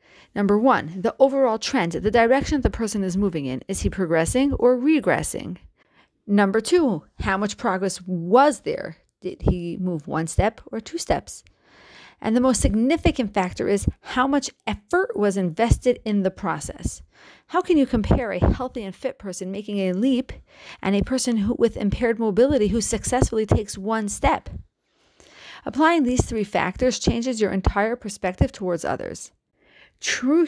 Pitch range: 190-255 Hz